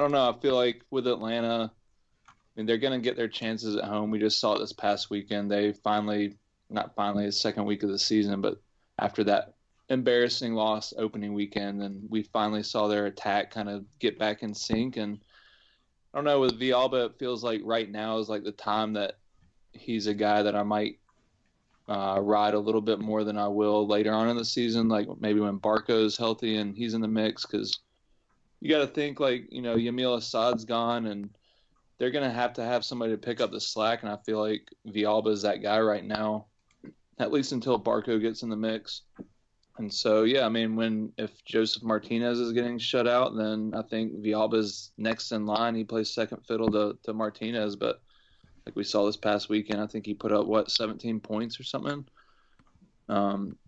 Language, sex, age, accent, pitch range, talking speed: English, male, 20-39, American, 105-115 Hz, 205 wpm